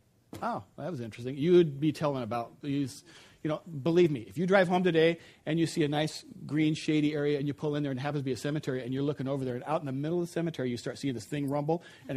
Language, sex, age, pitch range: English, male, 40-59, 135-175 Hz